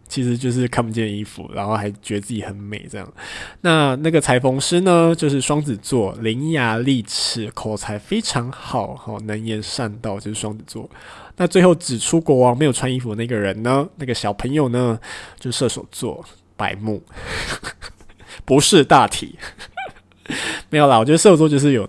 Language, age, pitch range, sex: Chinese, 20-39, 110-140 Hz, male